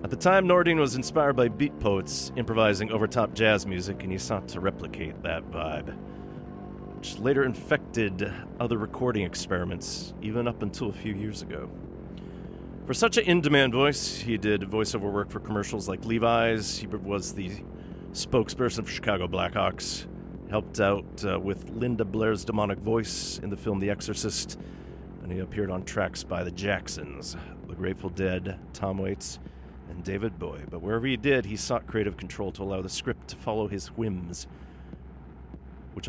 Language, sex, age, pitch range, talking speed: English, male, 40-59, 75-110 Hz, 165 wpm